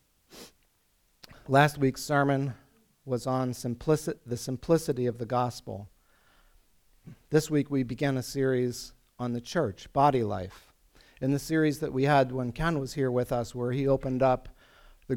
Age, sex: 50-69, male